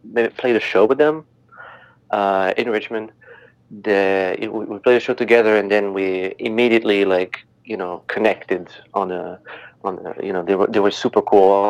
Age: 30-49